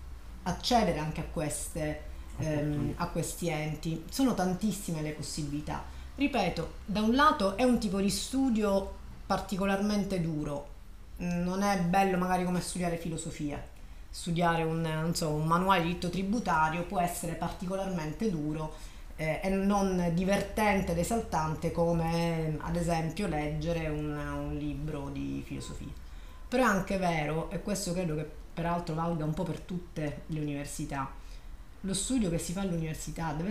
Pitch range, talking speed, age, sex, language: 155-195 Hz, 140 wpm, 40-59, female, Italian